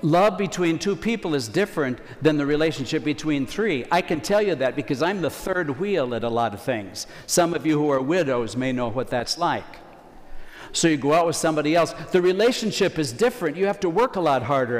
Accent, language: American, English